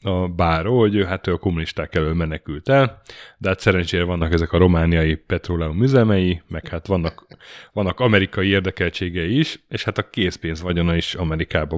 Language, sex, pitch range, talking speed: Hungarian, male, 85-105 Hz, 170 wpm